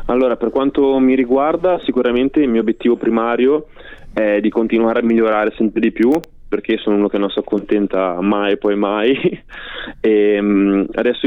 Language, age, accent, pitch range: Italian, 20-39, native, 105-120 Hz